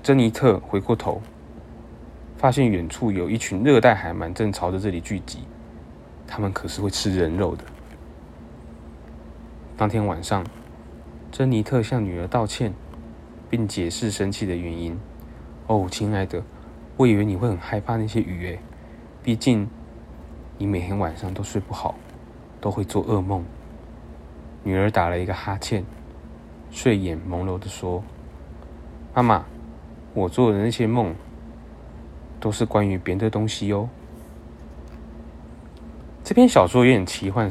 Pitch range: 80-110 Hz